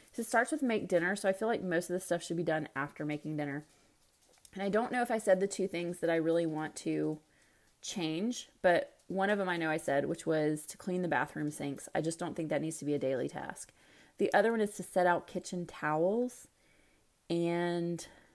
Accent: American